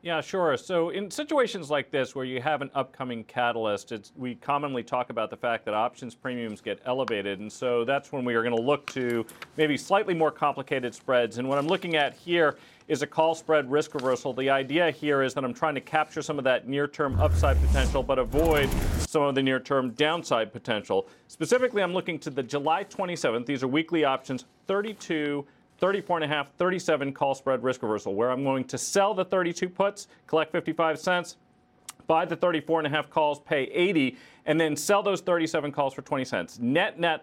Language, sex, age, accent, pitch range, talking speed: English, male, 40-59, American, 130-170 Hz, 190 wpm